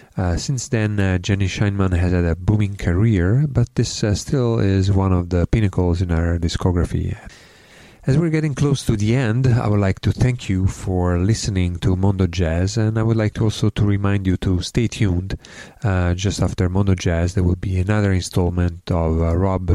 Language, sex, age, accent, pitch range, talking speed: English, male, 30-49, Italian, 90-105 Hz, 200 wpm